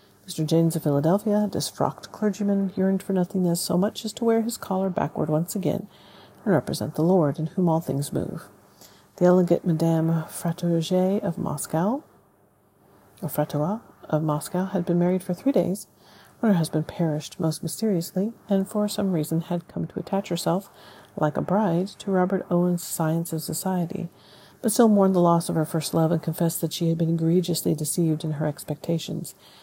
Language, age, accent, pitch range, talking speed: English, 50-69, American, 160-190 Hz, 175 wpm